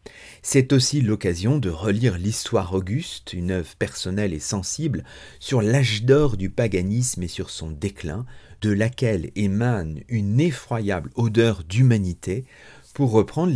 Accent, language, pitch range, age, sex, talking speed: French, French, 100-140 Hz, 40-59, male, 135 wpm